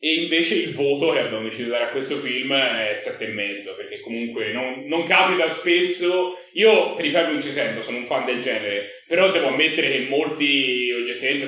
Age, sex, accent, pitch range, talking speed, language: 30-49, male, native, 125-175 Hz, 210 wpm, Italian